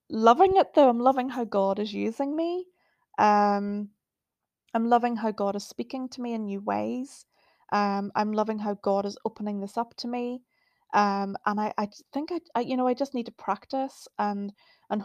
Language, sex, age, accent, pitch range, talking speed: English, female, 20-39, British, 200-240 Hz, 195 wpm